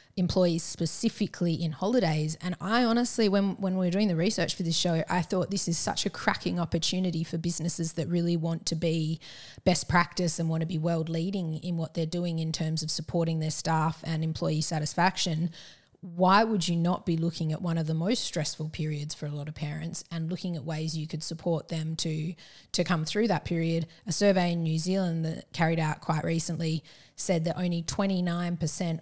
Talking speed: 205 wpm